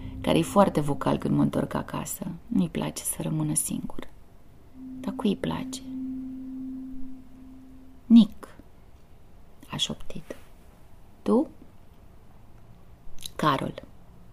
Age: 30-49